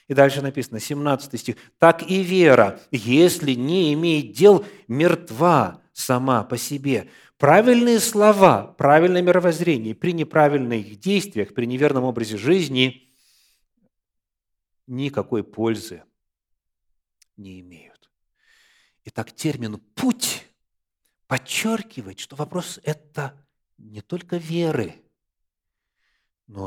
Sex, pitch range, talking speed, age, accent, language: male, 110-170 Hz, 95 wpm, 40-59, native, Russian